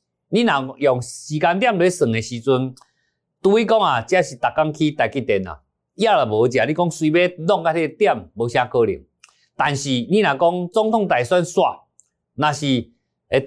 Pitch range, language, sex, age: 125-180 Hz, Chinese, male, 50-69